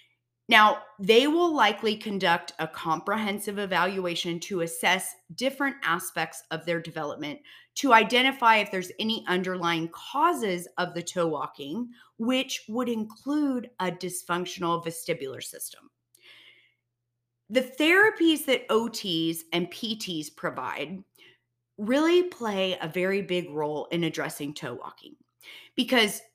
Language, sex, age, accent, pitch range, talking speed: English, female, 30-49, American, 170-220 Hz, 115 wpm